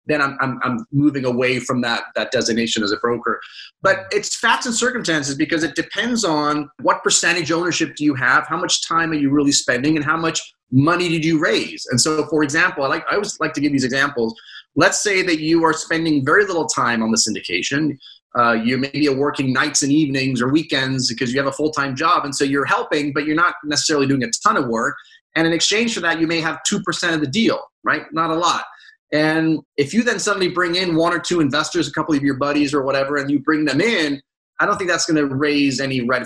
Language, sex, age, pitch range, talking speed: English, male, 30-49, 135-165 Hz, 240 wpm